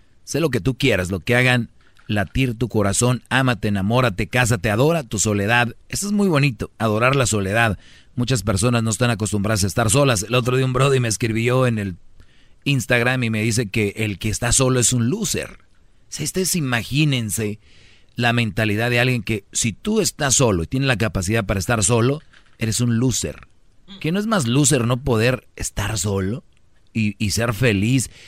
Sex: male